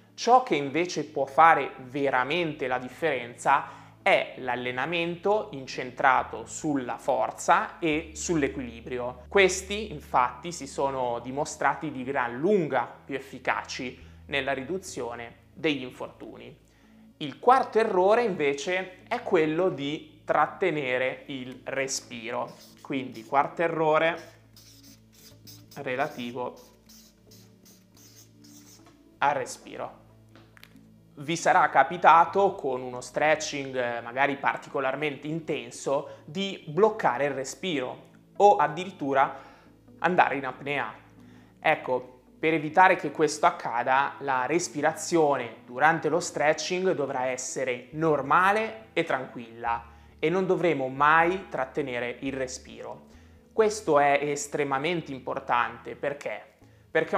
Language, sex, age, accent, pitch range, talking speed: Italian, male, 20-39, native, 125-170 Hz, 95 wpm